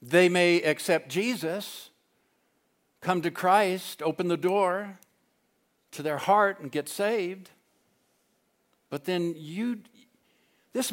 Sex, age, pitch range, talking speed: male, 60-79, 115-180 Hz, 110 wpm